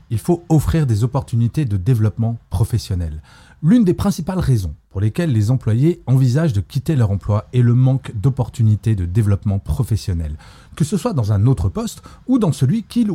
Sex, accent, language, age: male, French, French, 30-49